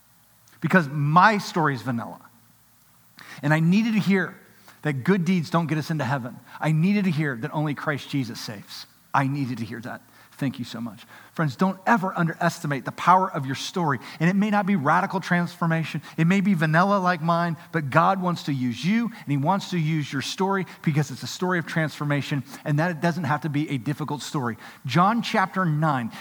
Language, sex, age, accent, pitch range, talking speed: English, male, 40-59, American, 160-210 Hz, 205 wpm